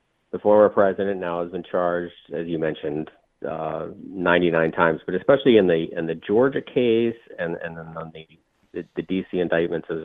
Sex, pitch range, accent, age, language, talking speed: male, 80-95 Hz, American, 40-59, English, 185 wpm